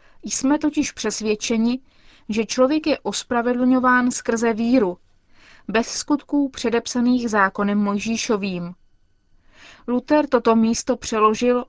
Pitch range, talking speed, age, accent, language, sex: 210-260 Hz, 90 wpm, 20-39, native, Czech, female